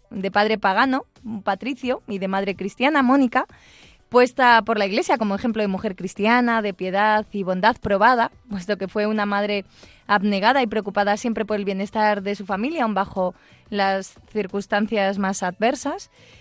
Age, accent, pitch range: 20-39, Spanish, 205-250 Hz